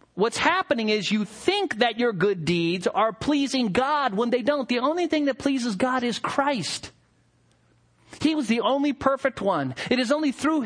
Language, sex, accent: English, male, American